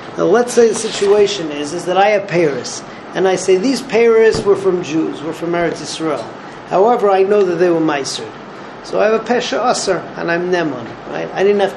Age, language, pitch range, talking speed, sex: 40-59, English, 170-205 Hz, 215 wpm, male